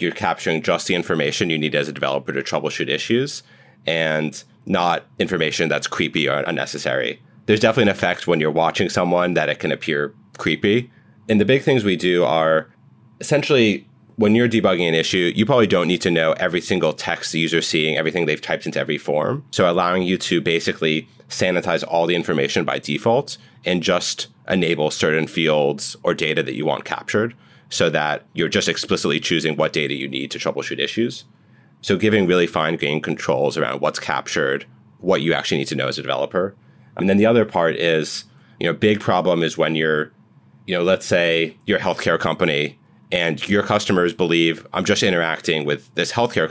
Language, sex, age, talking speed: English, male, 30-49, 190 wpm